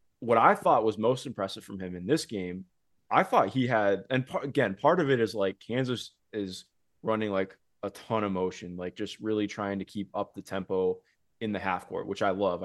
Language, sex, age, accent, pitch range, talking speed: English, male, 20-39, American, 95-130 Hz, 220 wpm